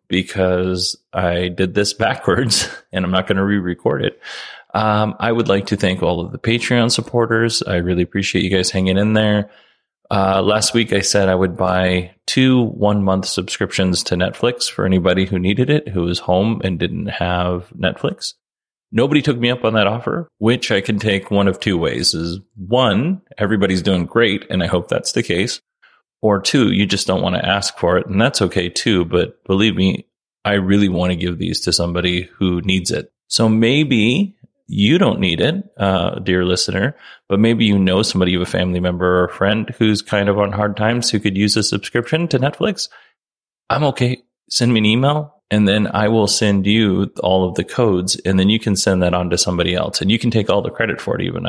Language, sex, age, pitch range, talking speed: English, male, 30-49, 90-110 Hz, 210 wpm